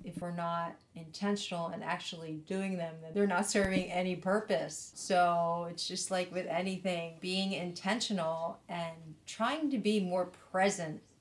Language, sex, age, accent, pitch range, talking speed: English, female, 40-59, American, 175-200 Hz, 150 wpm